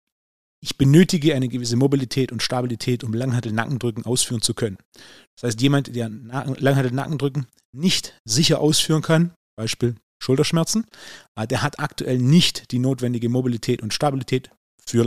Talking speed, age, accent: 130 wpm, 30-49, German